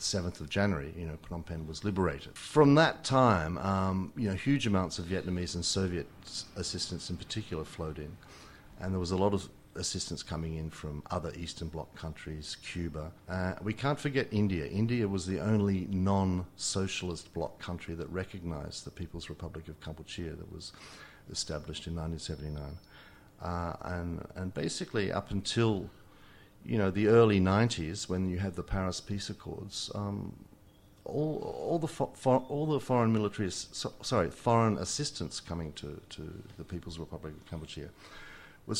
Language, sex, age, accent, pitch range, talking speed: English, male, 50-69, Australian, 85-105 Hz, 165 wpm